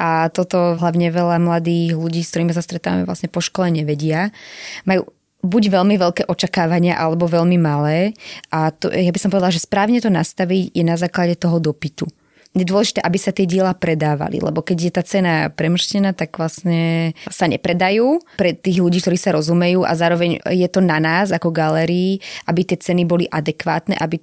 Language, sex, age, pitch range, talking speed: Slovak, female, 20-39, 165-185 Hz, 180 wpm